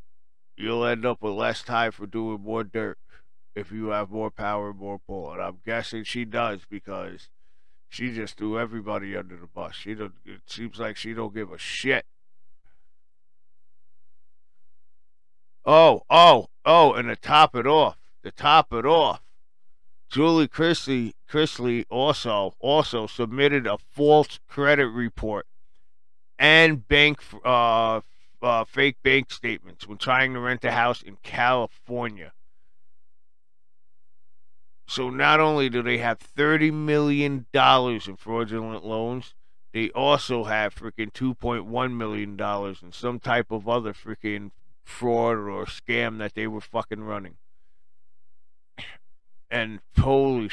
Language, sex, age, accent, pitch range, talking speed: English, male, 50-69, American, 95-120 Hz, 130 wpm